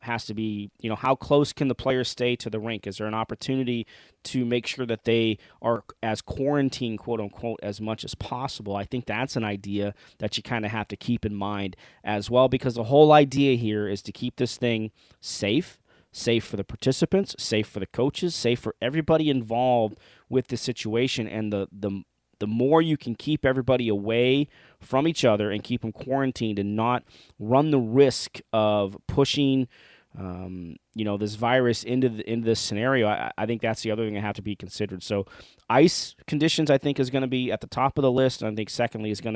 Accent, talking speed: American, 215 wpm